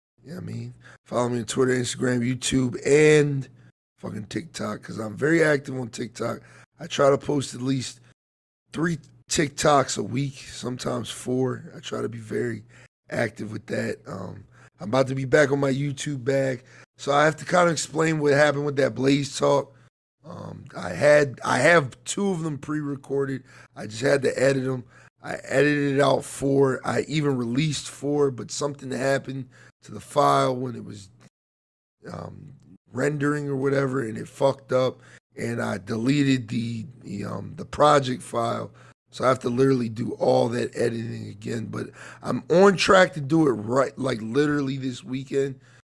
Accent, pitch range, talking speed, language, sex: American, 120-145 Hz, 175 wpm, English, male